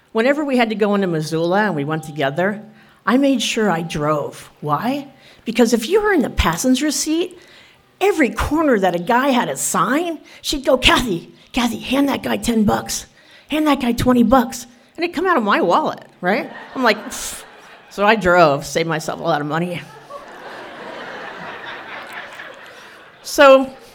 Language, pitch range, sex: English, 190-270 Hz, female